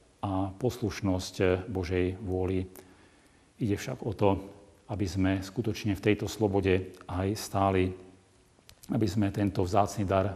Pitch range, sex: 95-105 Hz, male